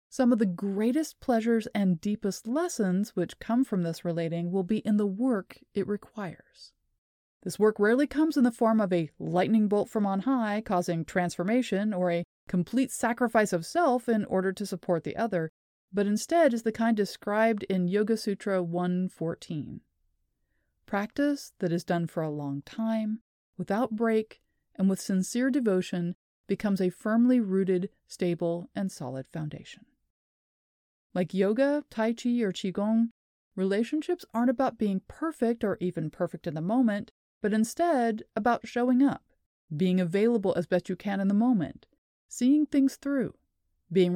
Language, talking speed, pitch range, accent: English, 155 wpm, 180-235 Hz, American